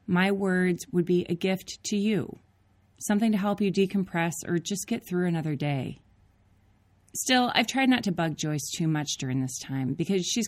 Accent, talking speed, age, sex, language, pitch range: American, 190 wpm, 30-49, female, English, 150-205 Hz